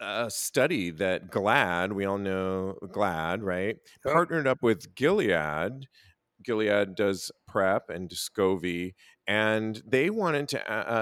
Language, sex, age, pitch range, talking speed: English, male, 40-59, 95-130 Hz, 125 wpm